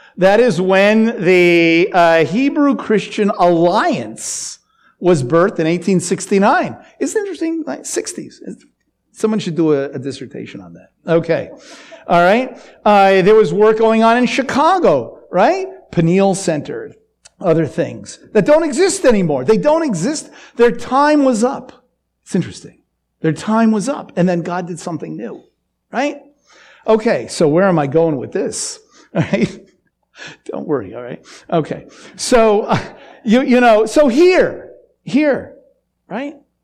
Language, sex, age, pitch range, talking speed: English, male, 50-69, 175-250 Hz, 140 wpm